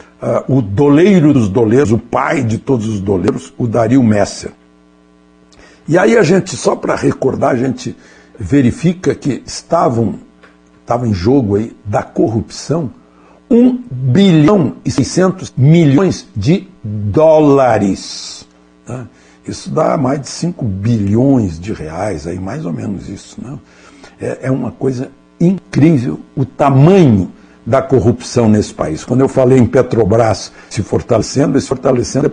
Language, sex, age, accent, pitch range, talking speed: Portuguese, male, 60-79, Brazilian, 105-145 Hz, 135 wpm